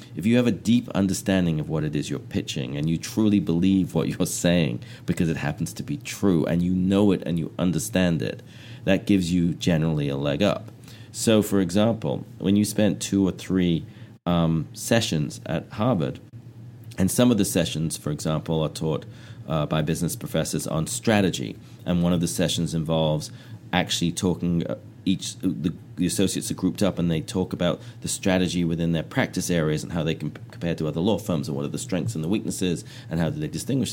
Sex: male